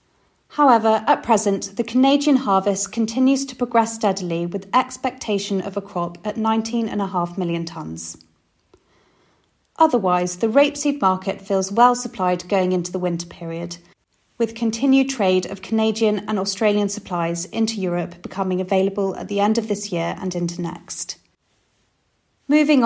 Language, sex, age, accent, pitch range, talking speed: English, female, 30-49, British, 180-235 Hz, 140 wpm